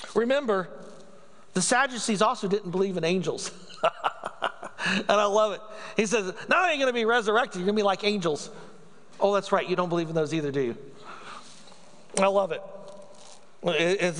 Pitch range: 180-225 Hz